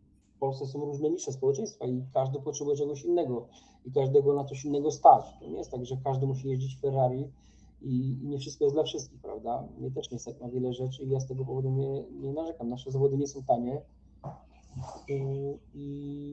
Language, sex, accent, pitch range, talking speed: Polish, male, native, 130-150 Hz, 200 wpm